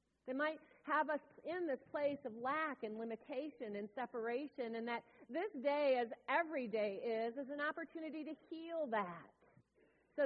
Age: 40-59